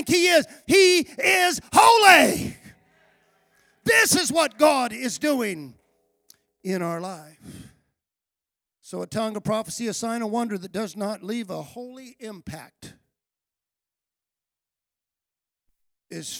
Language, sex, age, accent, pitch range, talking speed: English, male, 50-69, American, 145-230 Hz, 115 wpm